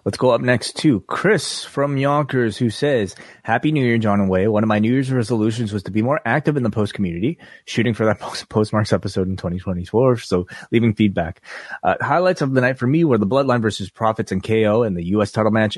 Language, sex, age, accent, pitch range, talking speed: English, male, 30-49, American, 100-120 Hz, 230 wpm